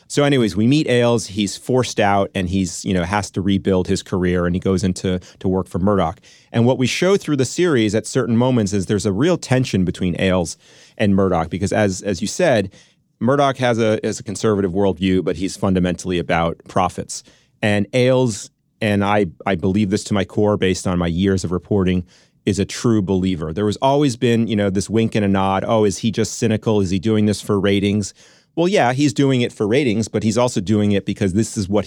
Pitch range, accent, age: 95-115 Hz, American, 30-49